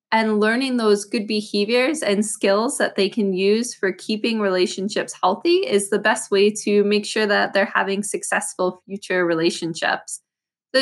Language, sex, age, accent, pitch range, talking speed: English, female, 20-39, American, 185-220 Hz, 160 wpm